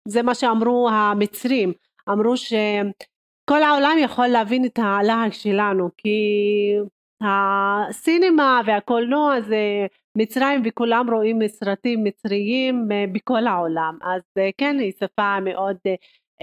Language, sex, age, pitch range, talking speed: Hebrew, female, 40-59, 195-255 Hz, 105 wpm